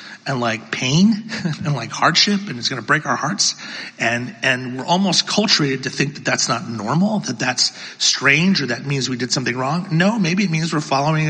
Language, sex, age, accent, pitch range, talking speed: English, male, 40-59, American, 130-185 Hz, 215 wpm